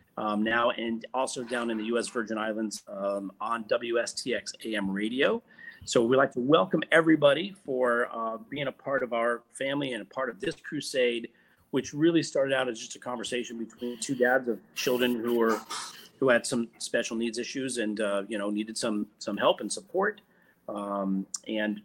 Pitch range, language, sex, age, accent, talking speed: 110-125 Hz, English, male, 40-59, American, 185 wpm